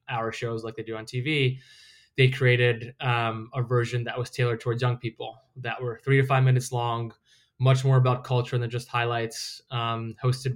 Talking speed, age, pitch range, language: 195 wpm, 20-39, 120-135 Hz, English